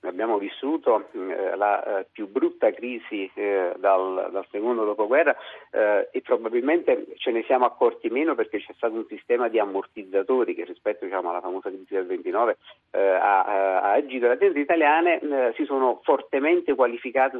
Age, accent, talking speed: 50-69, native, 160 wpm